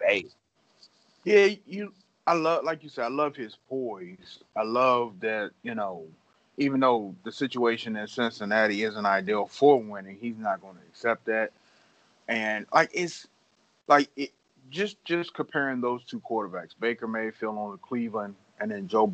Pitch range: 105-140 Hz